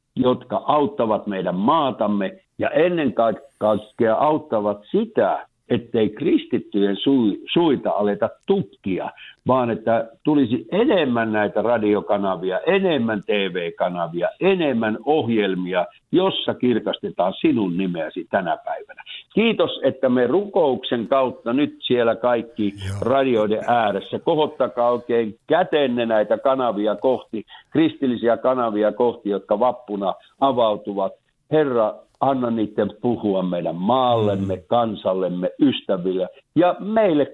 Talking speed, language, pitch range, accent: 100 wpm, Finnish, 105-140 Hz, native